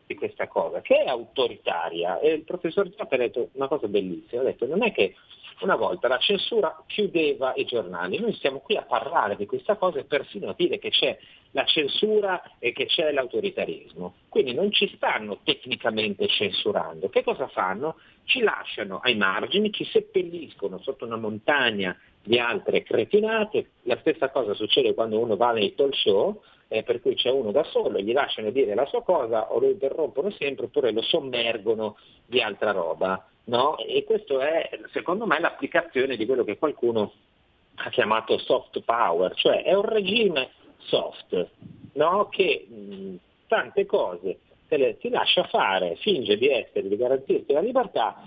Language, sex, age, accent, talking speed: Italian, male, 50-69, native, 170 wpm